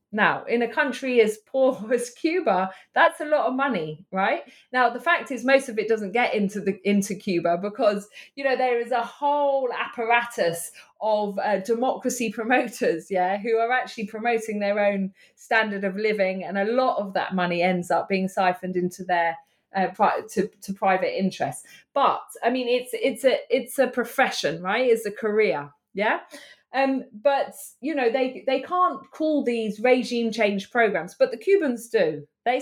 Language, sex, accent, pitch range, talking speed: English, female, British, 200-265 Hz, 180 wpm